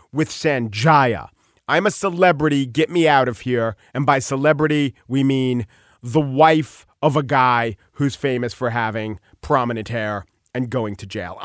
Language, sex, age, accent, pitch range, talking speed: English, male, 40-59, American, 135-210 Hz, 155 wpm